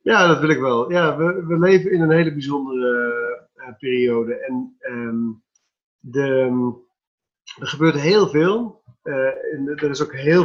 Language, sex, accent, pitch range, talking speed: Dutch, male, Dutch, 130-185 Hz, 145 wpm